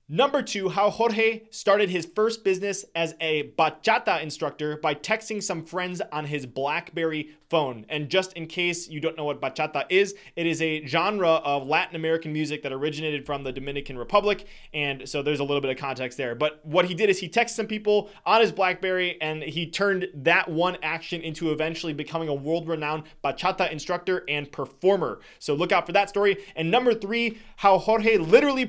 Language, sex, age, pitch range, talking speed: English, male, 20-39, 155-200 Hz, 190 wpm